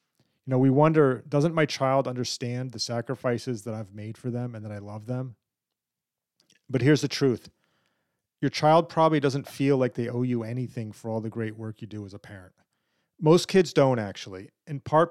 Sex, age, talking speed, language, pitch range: male, 40-59, 195 wpm, English, 115-140 Hz